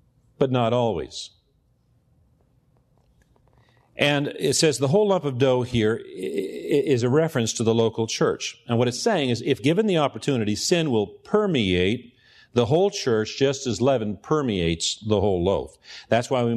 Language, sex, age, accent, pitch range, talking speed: English, male, 50-69, American, 110-145 Hz, 160 wpm